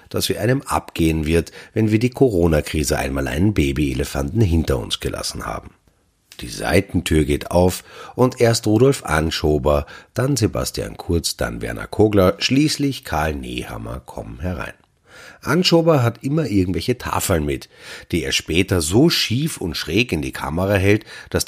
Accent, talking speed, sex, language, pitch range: German, 150 wpm, male, German, 75-115 Hz